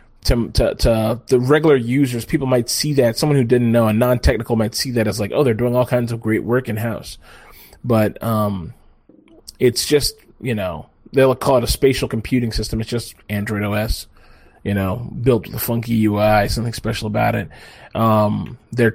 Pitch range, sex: 110-140 Hz, male